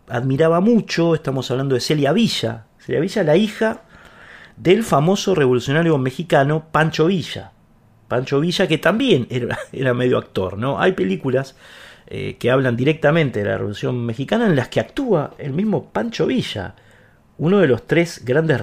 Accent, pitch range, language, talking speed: Argentinian, 115-165 Hz, Spanish, 160 wpm